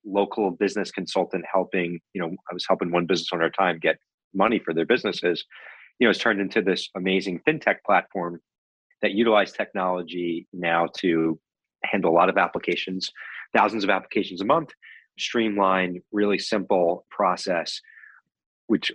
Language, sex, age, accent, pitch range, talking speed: English, male, 40-59, American, 85-105 Hz, 155 wpm